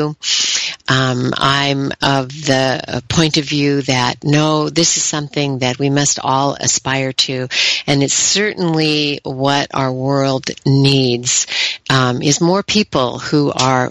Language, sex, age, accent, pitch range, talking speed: English, female, 50-69, American, 130-155 Hz, 135 wpm